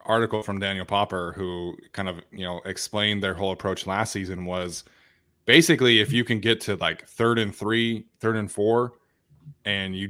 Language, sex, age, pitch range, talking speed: English, male, 20-39, 100-115 Hz, 185 wpm